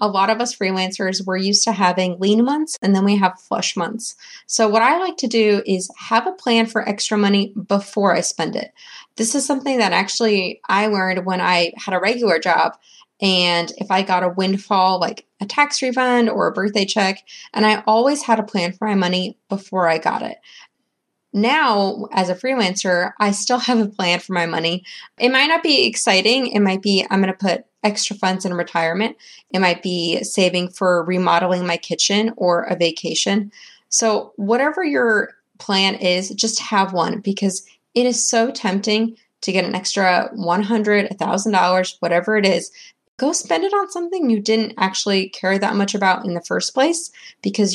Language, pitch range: English, 185-225 Hz